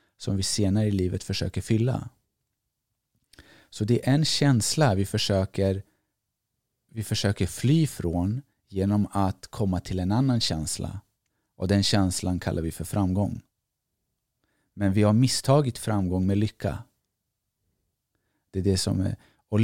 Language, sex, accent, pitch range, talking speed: Swedish, male, native, 95-120 Hz, 120 wpm